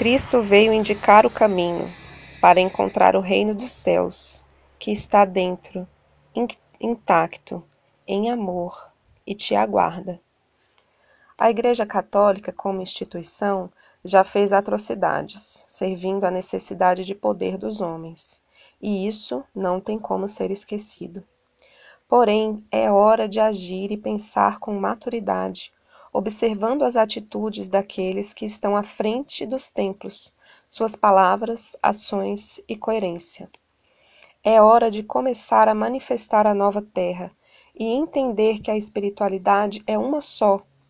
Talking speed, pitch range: 120 wpm, 185-225 Hz